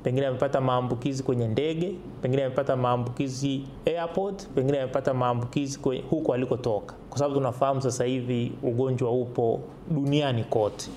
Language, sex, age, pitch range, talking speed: Swahili, male, 30-49, 125-160 Hz, 125 wpm